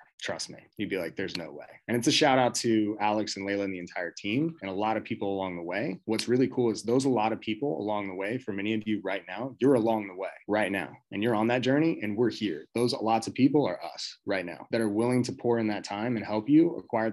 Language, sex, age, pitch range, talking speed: English, male, 20-39, 100-120 Hz, 285 wpm